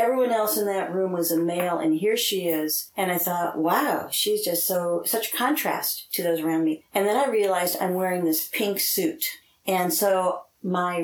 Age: 50-69